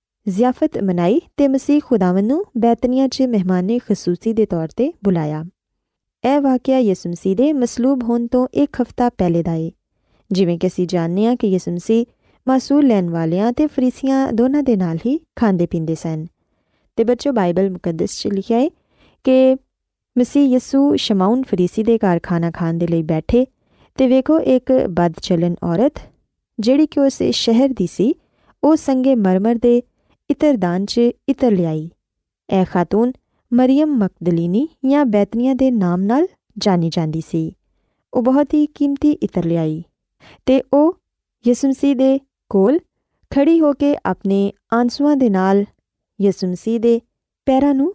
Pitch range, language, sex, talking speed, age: 185-270 Hz, Urdu, female, 130 wpm, 20-39